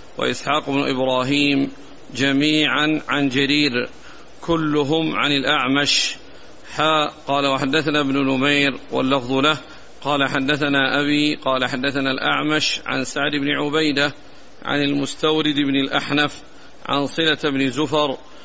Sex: male